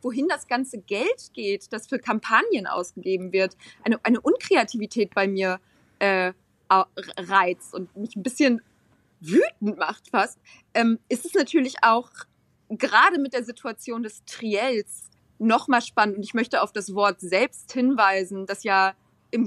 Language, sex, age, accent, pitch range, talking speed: German, female, 20-39, German, 200-250 Hz, 150 wpm